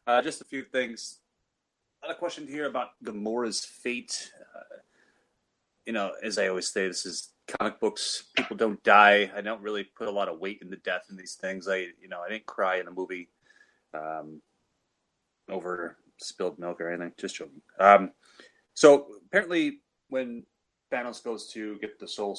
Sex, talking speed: male, 185 wpm